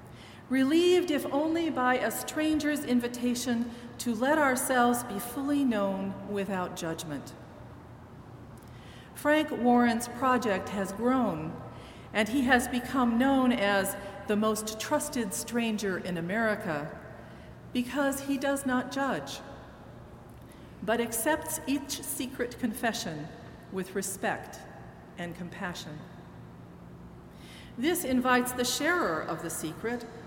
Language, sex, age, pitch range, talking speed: English, female, 40-59, 175-255 Hz, 105 wpm